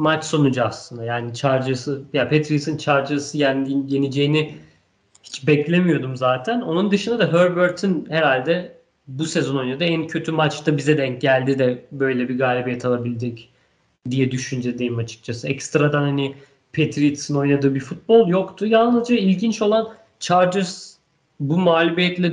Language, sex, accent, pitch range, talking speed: Turkish, male, native, 130-165 Hz, 130 wpm